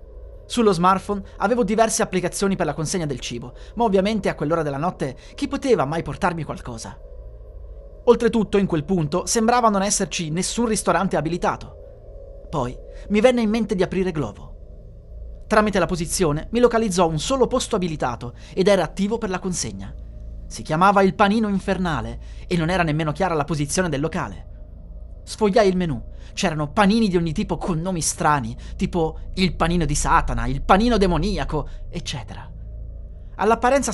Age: 30-49